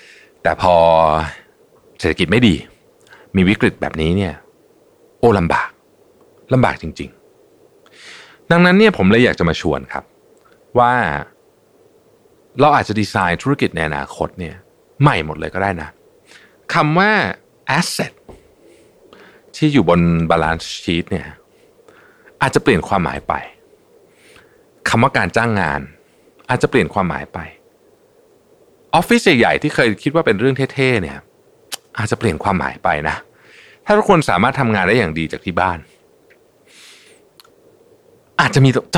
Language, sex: Thai, male